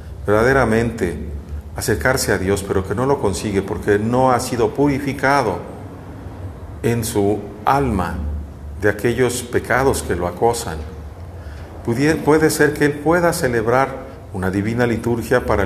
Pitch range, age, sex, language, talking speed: 90-115 Hz, 50-69, male, Spanish, 130 wpm